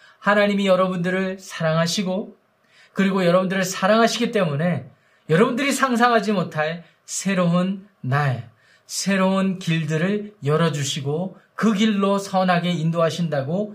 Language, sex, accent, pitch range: Korean, male, native, 155-205 Hz